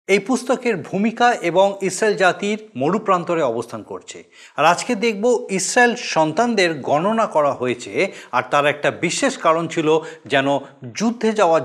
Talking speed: 140 wpm